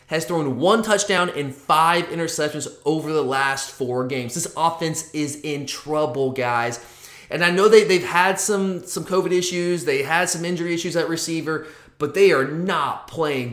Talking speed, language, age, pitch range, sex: 180 wpm, English, 20-39, 145-190 Hz, male